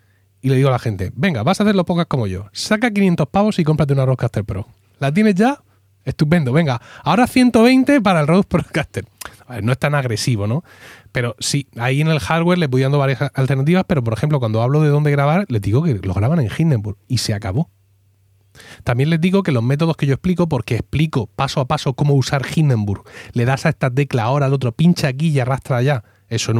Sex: male